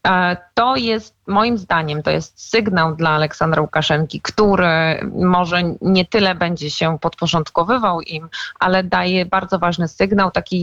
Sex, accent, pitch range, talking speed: female, native, 155-185 Hz, 135 wpm